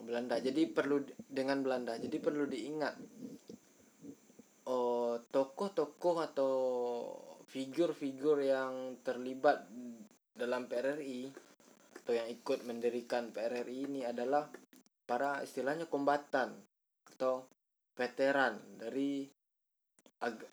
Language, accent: Indonesian, native